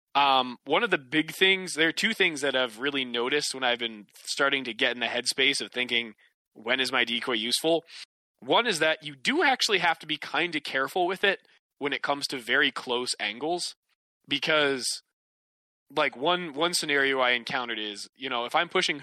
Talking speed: 200 wpm